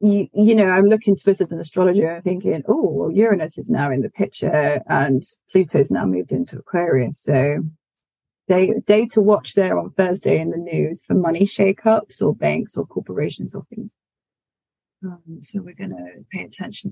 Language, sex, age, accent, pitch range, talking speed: English, female, 30-49, British, 170-225 Hz, 180 wpm